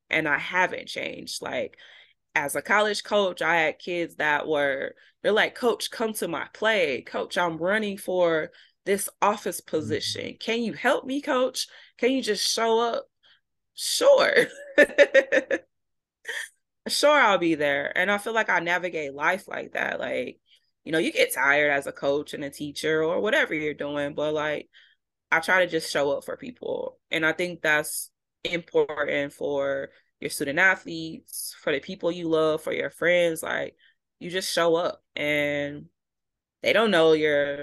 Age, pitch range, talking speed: 20-39, 145-200 Hz, 165 wpm